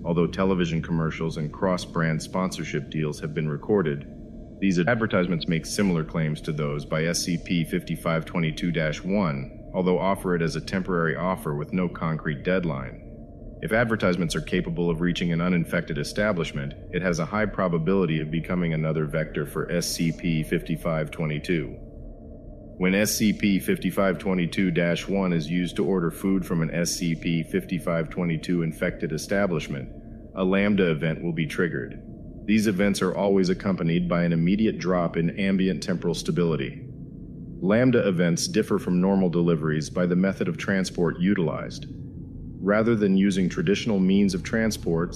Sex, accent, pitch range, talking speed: male, American, 80-95 Hz, 130 wpm